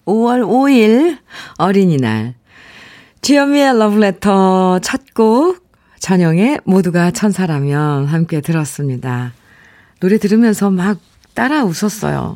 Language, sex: Korean, female